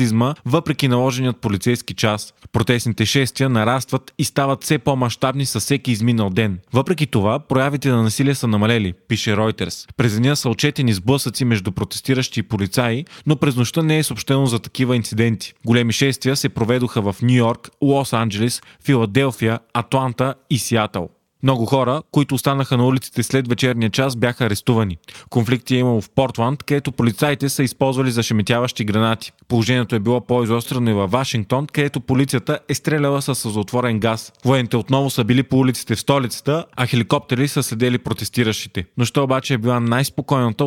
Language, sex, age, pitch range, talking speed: Bulgarian, male, 20-39, 115-135 Hz, 160 wpm